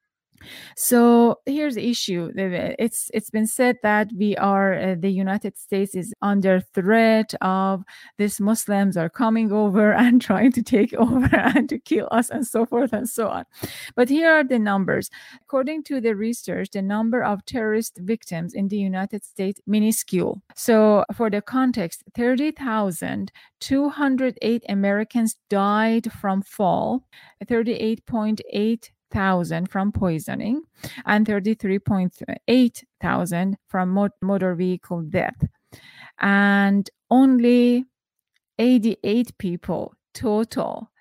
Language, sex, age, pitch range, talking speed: English, female, 30-49, 195-235 Hz, 125 wpm